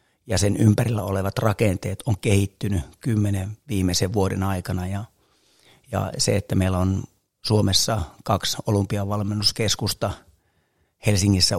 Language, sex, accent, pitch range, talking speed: Finnish, male, native, 95-105 Hz, 110 wpm